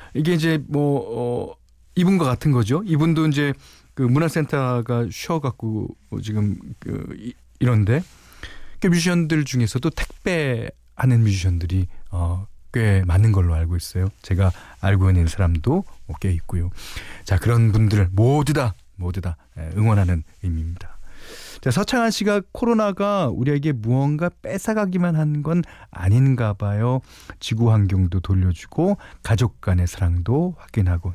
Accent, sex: native, male